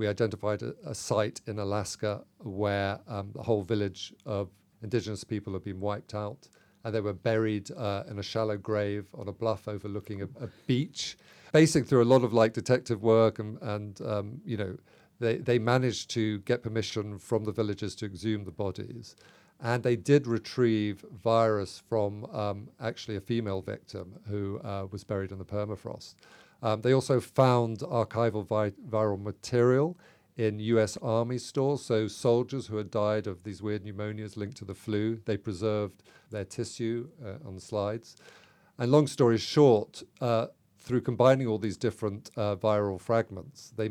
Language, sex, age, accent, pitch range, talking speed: English, male, 50-69, British, 105-120 Hz, 170 wpm